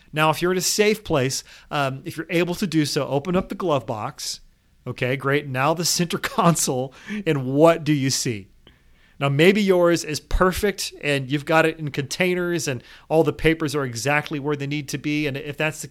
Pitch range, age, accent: 140-165 Hz, 40-59, American